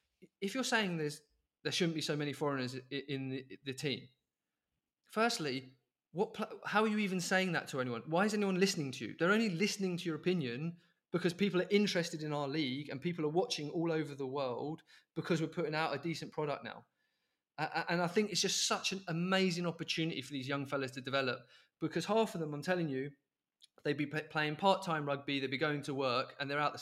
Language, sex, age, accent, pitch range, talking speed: English, male, 20-39, British, 140-175 Hz, 215 wpm